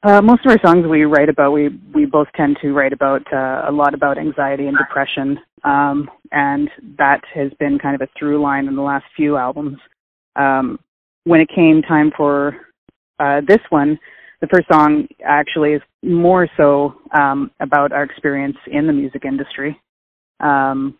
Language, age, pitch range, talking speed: English, 30-49, 140-155 Hz, 175 wpm